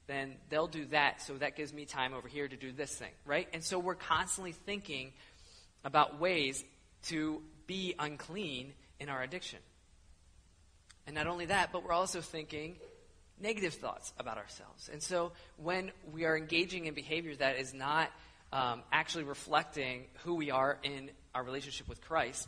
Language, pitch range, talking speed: English, 130-175 Hz, 170 wpm